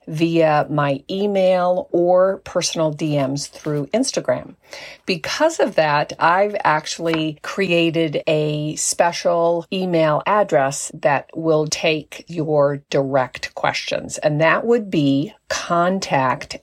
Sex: female